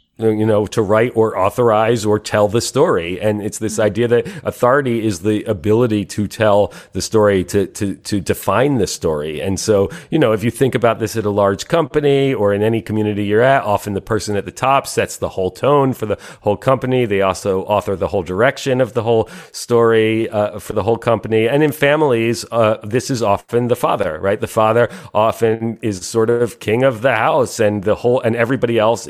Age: 40-59